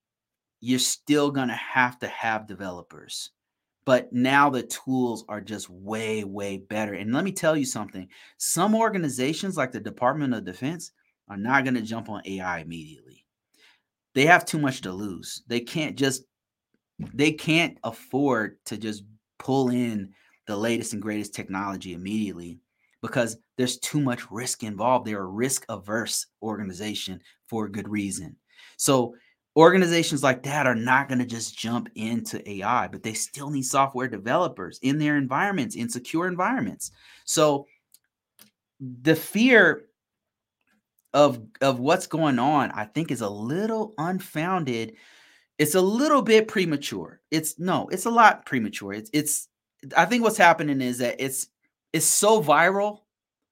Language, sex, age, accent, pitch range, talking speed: English, male, 30-49, American, 110-150 Hz, 150 wpm